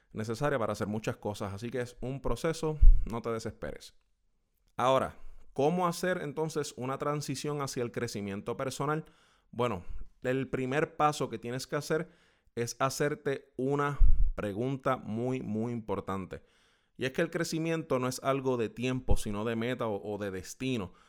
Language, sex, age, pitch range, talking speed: Spanish, male, 20-39, 105-135 Hz, 155 wpm